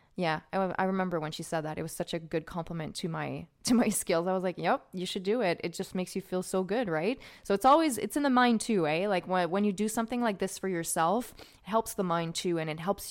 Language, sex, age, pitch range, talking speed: English, female, 20-39, 175-215 Hz, 290 wpm